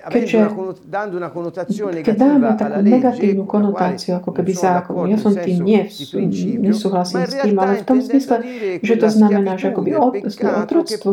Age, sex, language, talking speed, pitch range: 40-59, female, Slovak, 135 wpm, 185-225 Hz